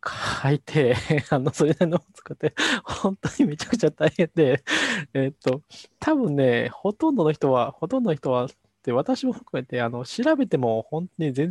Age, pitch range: 20-39, 115-170 Hz